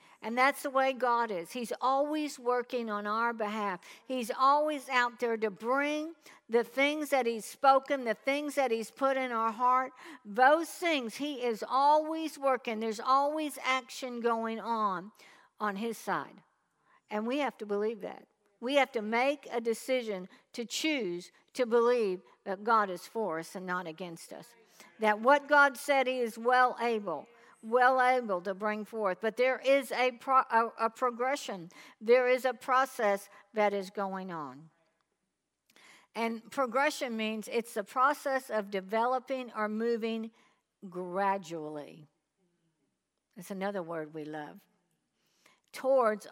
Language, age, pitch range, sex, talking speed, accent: English, 60-79, 205-260 Hz, female, 150 wpm, American